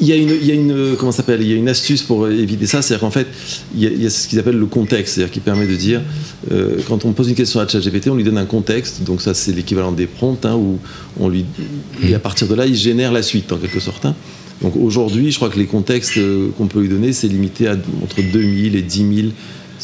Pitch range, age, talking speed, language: 100-125 Hz, 40-59, 250 wpm, French